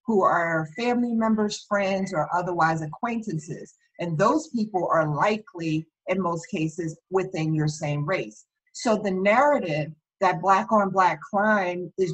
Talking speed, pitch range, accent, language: 135 wpm, 180-230 Hz, American, English